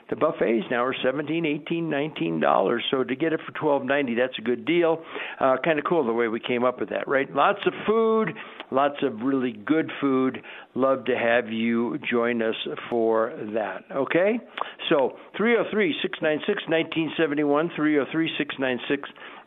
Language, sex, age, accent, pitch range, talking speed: English, male, 60-79, American, 125-165 Hz, 150 wpm